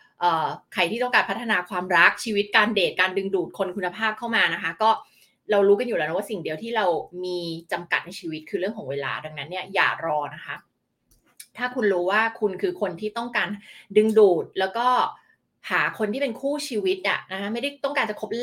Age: 20-39